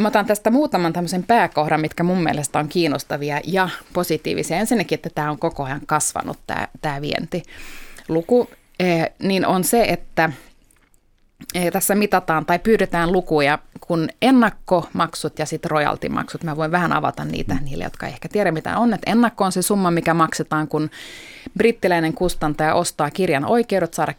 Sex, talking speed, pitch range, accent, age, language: female, 155 wpm, 155-190 Hz, native, 20-39, Finnish